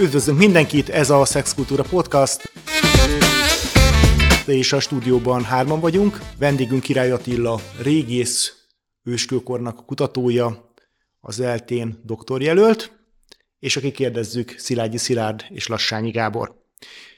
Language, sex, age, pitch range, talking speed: Hungarian, male, 30-49, 120-140 Hz, 100 wpm